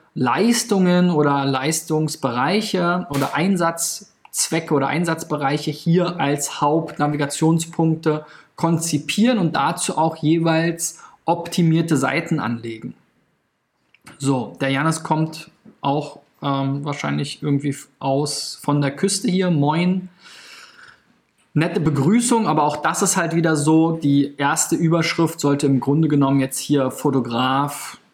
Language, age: German, 20-39